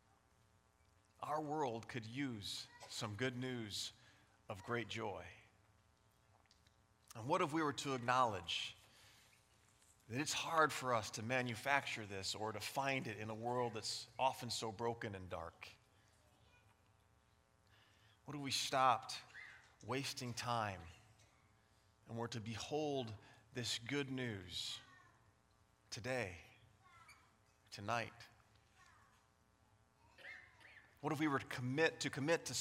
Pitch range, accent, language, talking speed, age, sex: 110-140 Hz, American, English, 115 wpm, 30-49, male